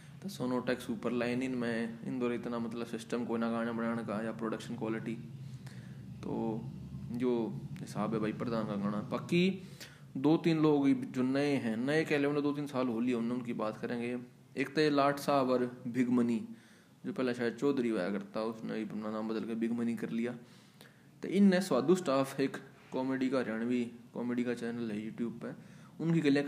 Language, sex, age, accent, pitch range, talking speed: Hindi, male, 20-39, native, 120-140 Hz, 175 wpm